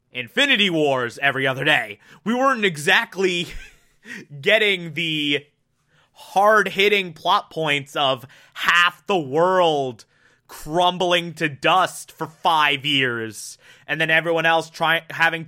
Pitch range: 130-180 Hz